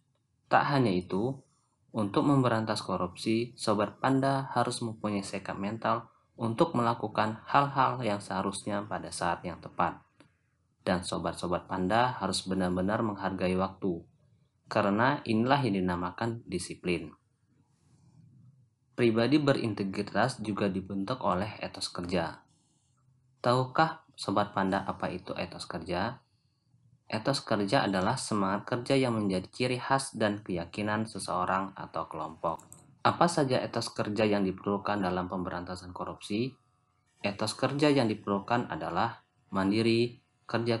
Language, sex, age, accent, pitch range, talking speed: Indonesian, male, 30-49, native, 95-125 Hz, 115 wpm